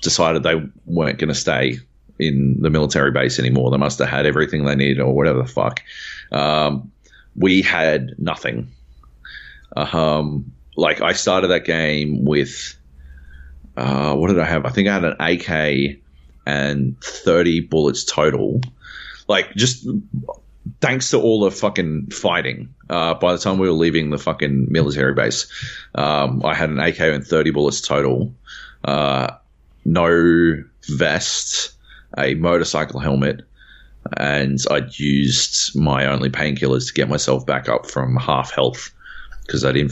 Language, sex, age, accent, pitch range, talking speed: English, male, 30-49, Australian, 65-80 Hz, 150 wpm